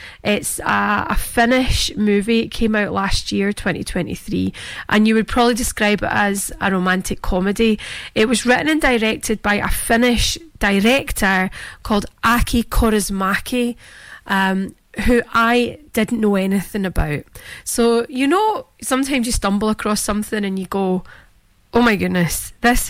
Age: 30-49